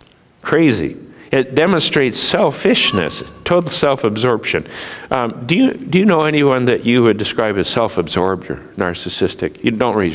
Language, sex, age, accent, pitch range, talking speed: English, male, 50-69, American, 110-145 Hz, 140 wpm